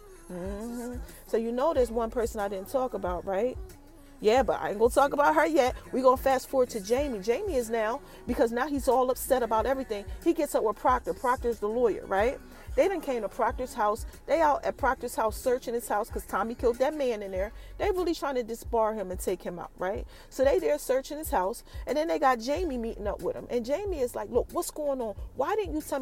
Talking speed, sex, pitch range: 245 wpm, female, 210-280 Hz